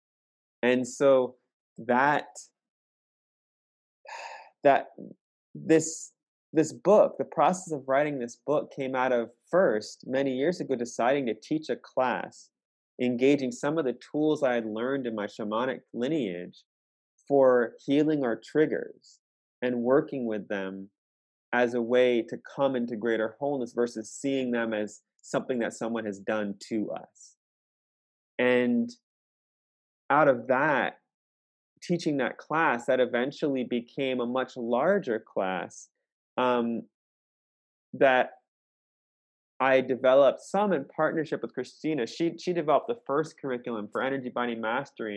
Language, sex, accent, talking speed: English, male, American, 130 wpm